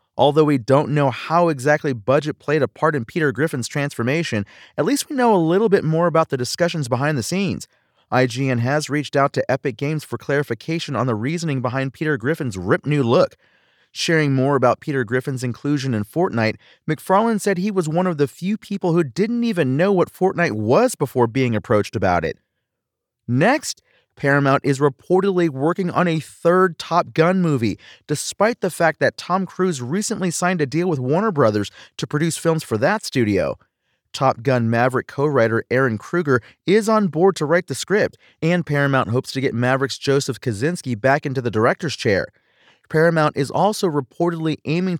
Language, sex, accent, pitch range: English, male, American, 130-170 Hz